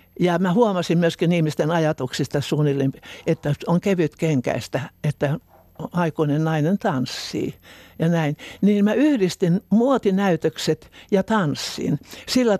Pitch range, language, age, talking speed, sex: 165-215 Hz, Finnish, 60-79, 110 wpm, male